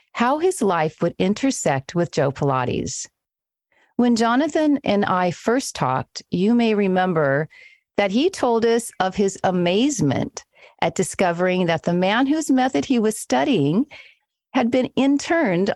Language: English